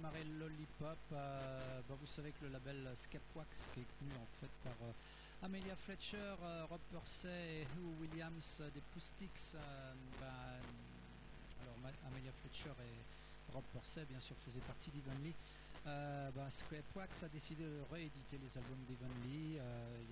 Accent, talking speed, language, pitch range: French, 160 wpm, French, 130-165 Hz